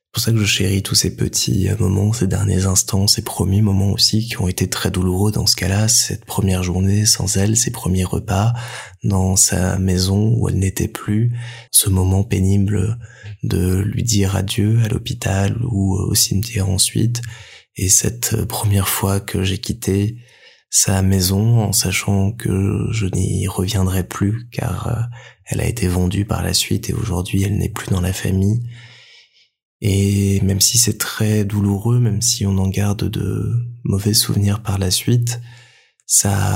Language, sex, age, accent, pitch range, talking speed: French, male, 20-39, French, 95-115 Hz, 170 wpm